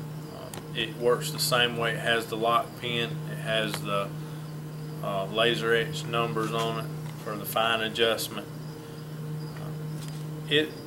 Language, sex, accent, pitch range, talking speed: English, male, American, 130-155 Hz, 140 wpm